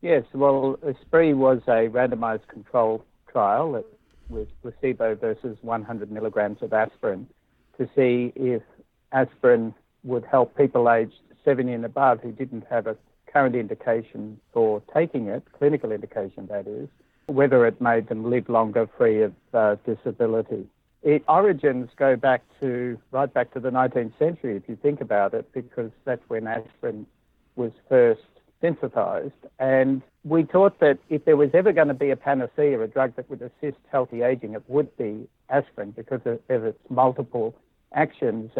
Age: 60-79